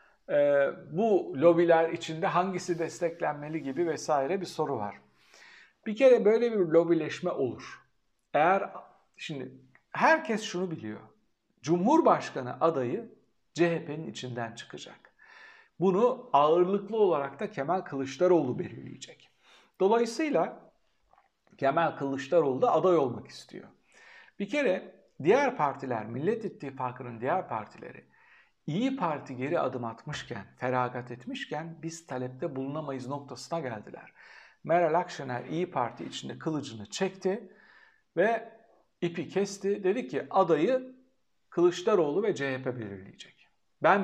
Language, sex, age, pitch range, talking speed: Turkish, male, 60-79, 135-210 Hz, 110 wpm